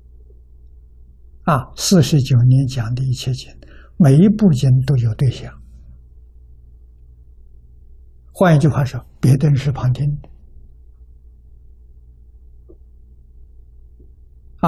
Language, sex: Chinese, male